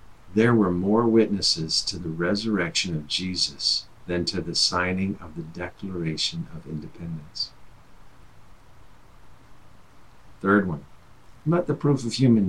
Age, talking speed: 50-69, 120 wpm